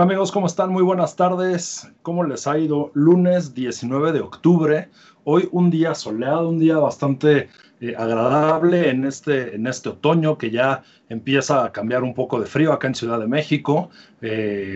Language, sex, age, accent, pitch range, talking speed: Spanish, male, 40-59, Mexican, 120-160 Hz, 175 wpm